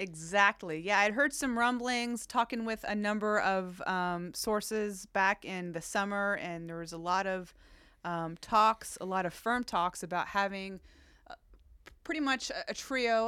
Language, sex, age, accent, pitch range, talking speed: English, female, 30-49, American, 175-220 Hz, 170 wpm